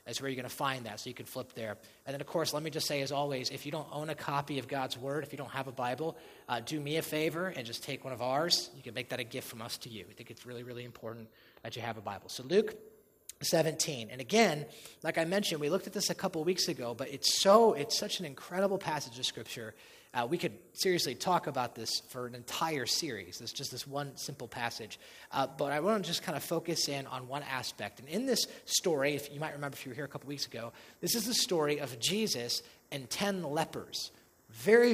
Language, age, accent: English, 30-49, American